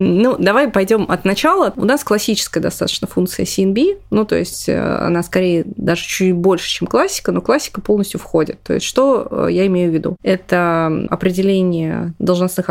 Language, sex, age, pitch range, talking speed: Russian, female, 20-39, 175-205 Hz, 165 wpm